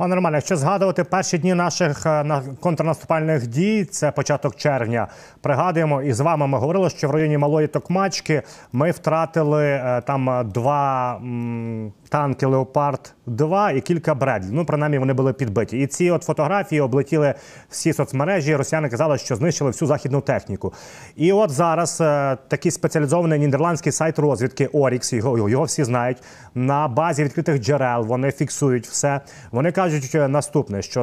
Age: 30-49